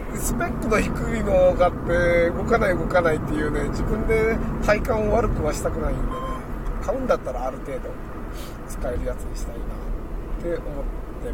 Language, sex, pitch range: Japanese, male, 155-225 Hz